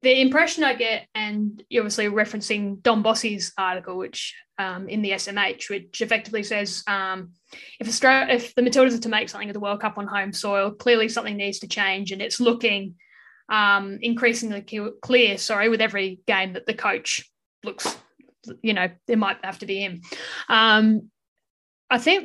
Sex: female